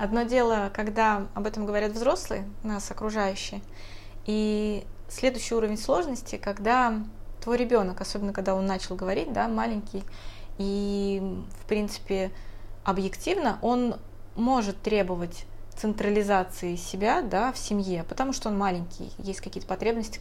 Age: 20-39